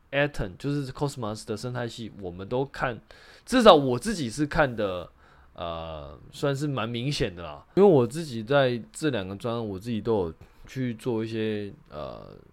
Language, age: Chinese, 20-39